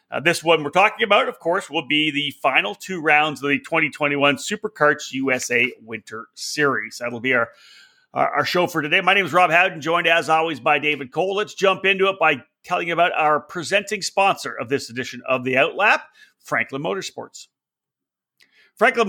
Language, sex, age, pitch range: English, male, 40-59, 145-200 Hz